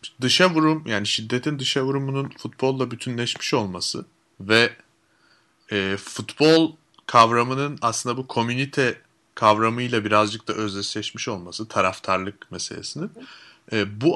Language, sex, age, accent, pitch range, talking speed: Turkish, male, 30-49, native, 110-140 Hz, 105 wpm